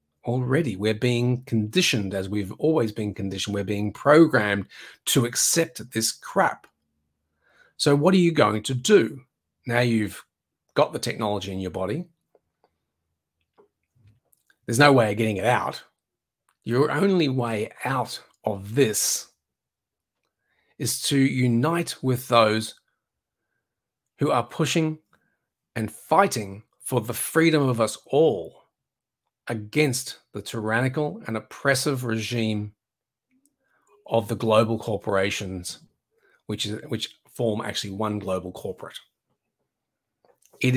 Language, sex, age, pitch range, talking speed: English, male, 30-49, 105-130 Hz, 115 wpm